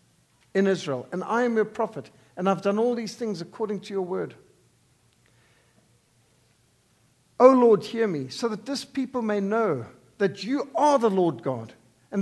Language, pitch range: English, 145-235 Hz